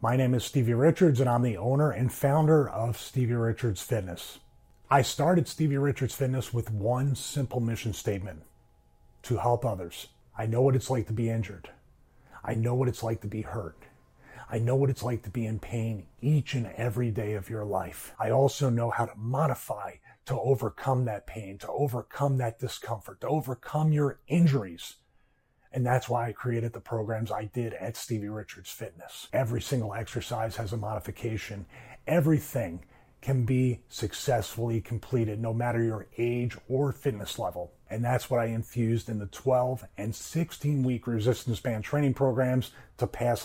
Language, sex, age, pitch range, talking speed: English, male, 40-59, 110-130 Hz, 175 wpm